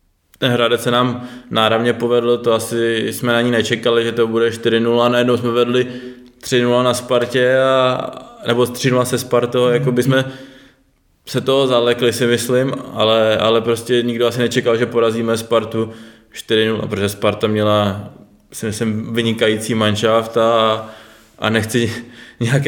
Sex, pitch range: male, 110-120 Hz